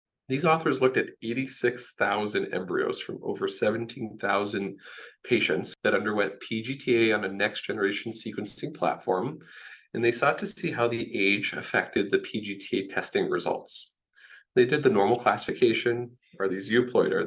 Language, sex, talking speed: English, male, 140 wpm